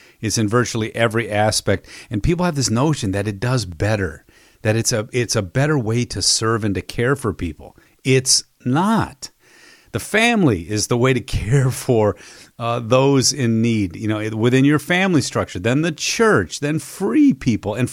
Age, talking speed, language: 40-59, 185 wpm, English